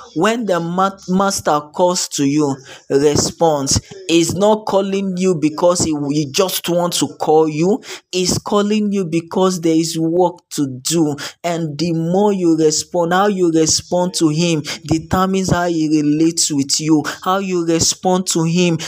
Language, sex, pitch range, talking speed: English, male, 150-185 Hz, 155 wpm